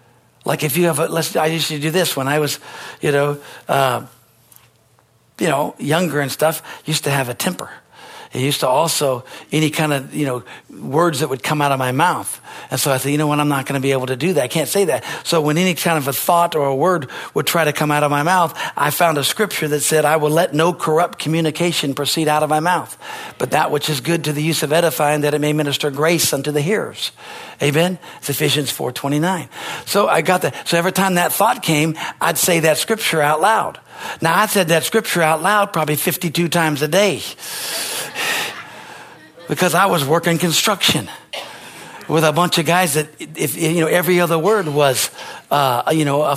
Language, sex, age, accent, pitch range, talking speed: English, male, 60-79, American, 145-170 Hz, 220 wpm